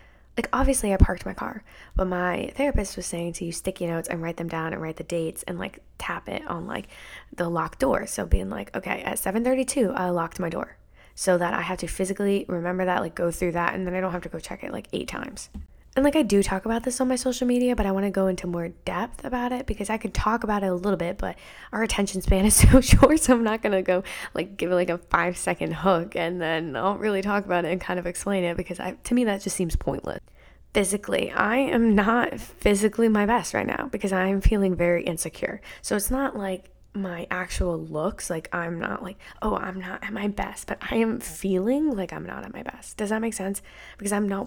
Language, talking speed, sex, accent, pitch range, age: English, 250 wpm, female, American, 175-215 Hz, 20-39